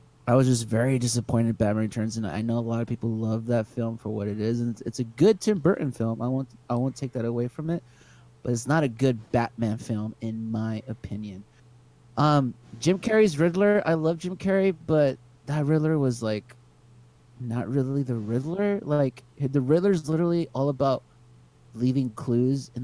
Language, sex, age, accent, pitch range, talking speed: English, male, 30-49, American, 115-145 Hz, 195 wpm